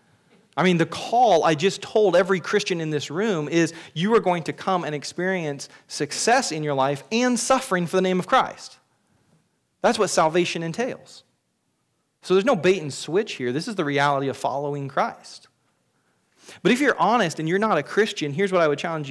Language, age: English, 30-49